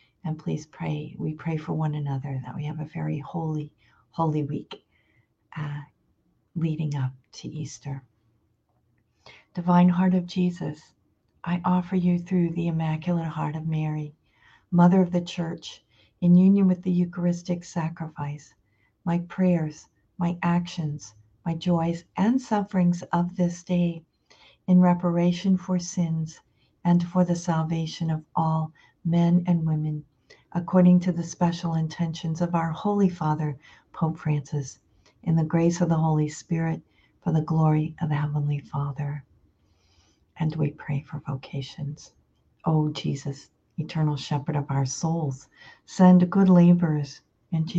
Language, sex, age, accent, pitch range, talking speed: English, female, 50-69, American, 145-175 Hz, 135 wpm